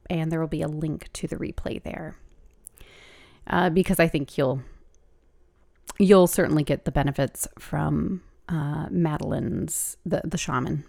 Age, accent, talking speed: 30-49, American, 145 wpm